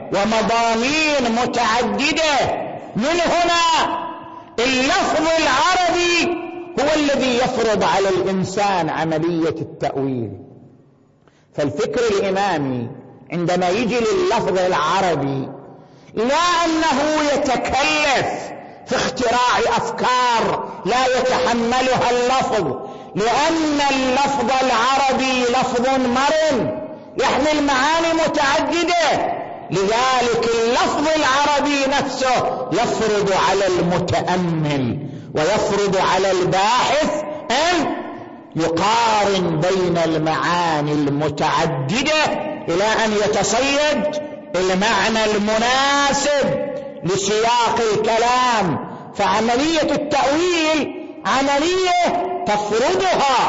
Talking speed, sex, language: 70 wpm, male, Arabic